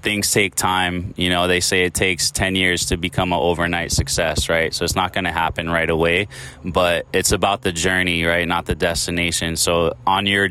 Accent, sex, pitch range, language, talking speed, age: American, male, 85-100 Hz, English, 210 wpm, 20-39